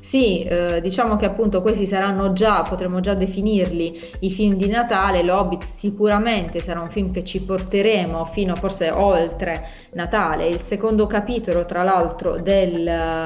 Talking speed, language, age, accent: 145 wpm, Italian, 30-49, native